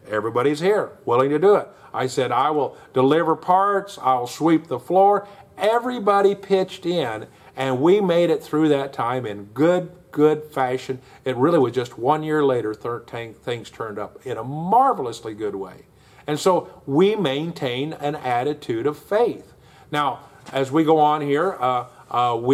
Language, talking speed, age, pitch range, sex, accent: English, 160 wpm, 50-69, 135-180 Hz, male, American